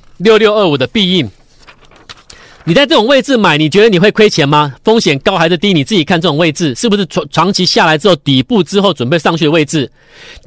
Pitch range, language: 175-245 Hz, Chinese